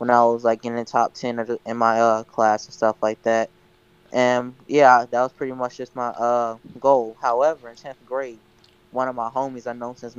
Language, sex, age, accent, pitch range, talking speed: English, male, 10-29, American, 115-130 Hz, 230 wpm